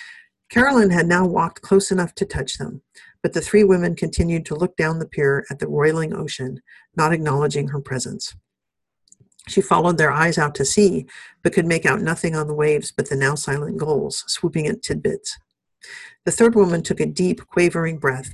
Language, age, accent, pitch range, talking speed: English, 50-69, American, 145-200 Hz, 190 wpm